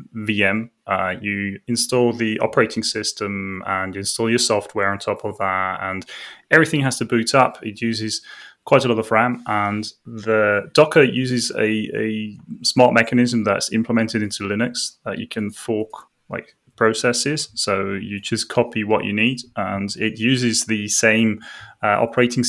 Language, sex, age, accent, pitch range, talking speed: English, male, 20-39, British, 100-115 Hz, 160 wpm